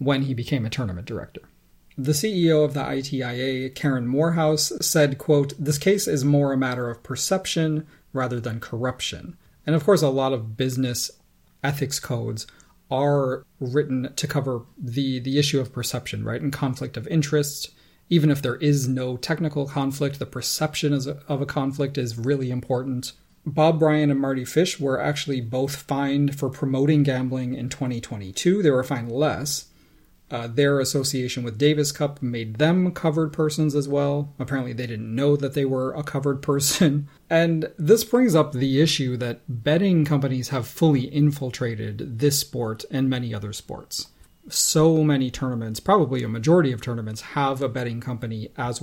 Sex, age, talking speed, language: male, 30-49, 165 wpm, English